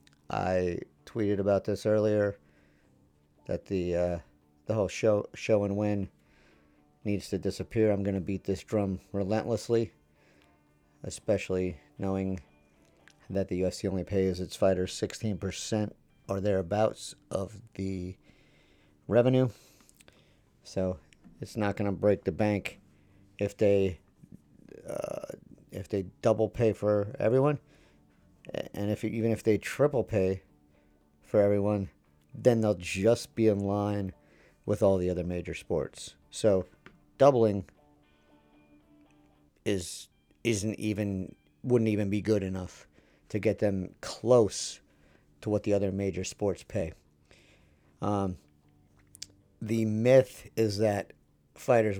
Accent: American